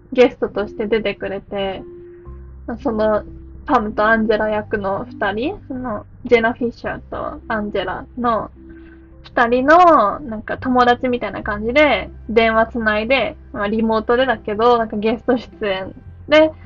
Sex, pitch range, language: female, 200-285 Hz, Japanese